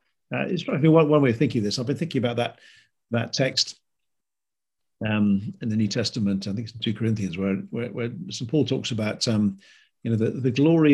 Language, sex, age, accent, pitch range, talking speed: English, male, 50-69, British, 105-140 Hz, 225 wpm